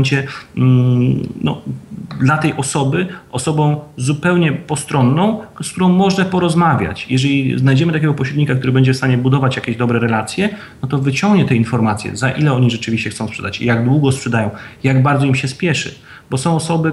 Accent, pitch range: native, 125-160 Hz